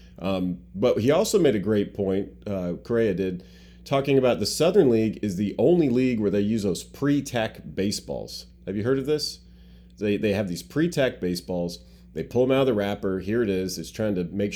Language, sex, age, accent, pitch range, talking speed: English, male, 30-49, American, 90-120 Hz, 215 wpm